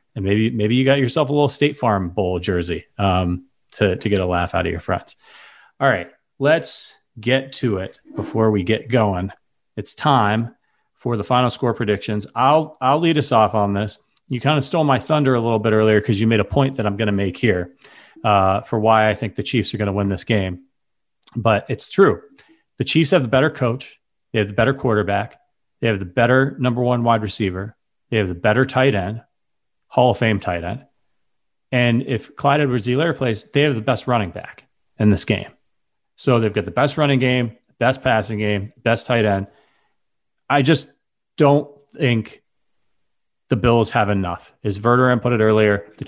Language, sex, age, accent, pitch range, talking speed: English, male, 30-49, American, 105-135 Hz, 200 wpm